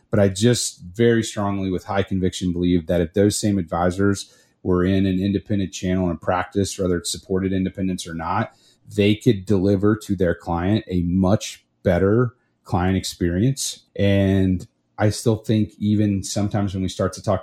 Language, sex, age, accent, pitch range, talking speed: English, male, 30-49, American, 90-105 Hz, 170 wpm